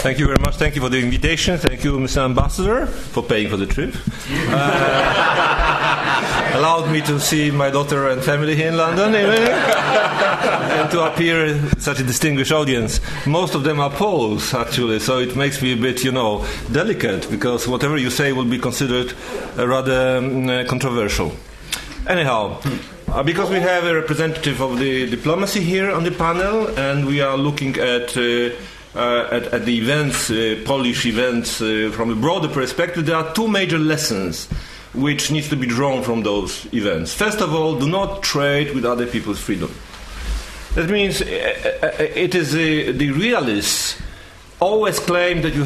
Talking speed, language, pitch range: 175 wpm, English, 120-160 Hz